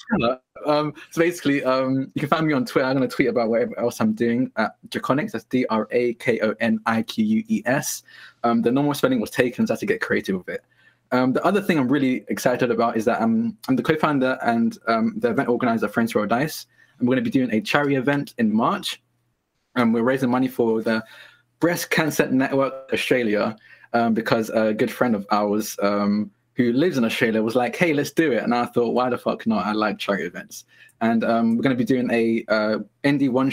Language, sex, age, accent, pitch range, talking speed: English, male, 20-39, British, 115-145 Hz, 210 wpm